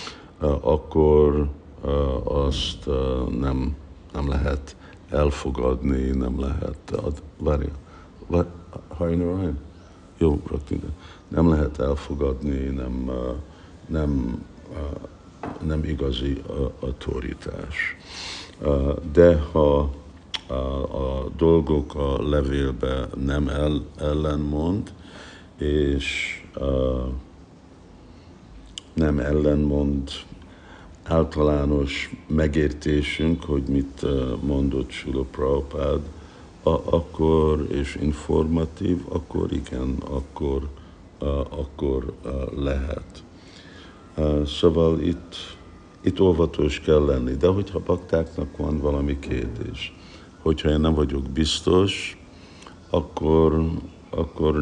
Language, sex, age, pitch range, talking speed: Hungarian, male, 60-79, 70-85 Hz, 80 wpm